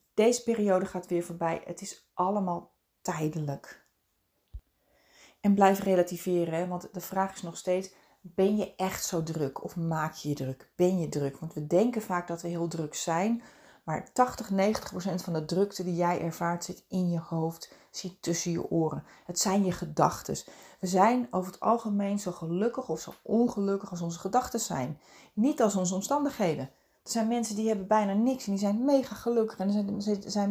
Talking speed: 190 wpm